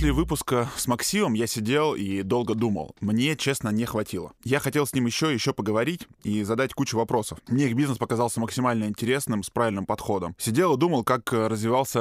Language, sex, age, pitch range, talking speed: Russian, male, 10-29, 105-135 Hz, 190 wpm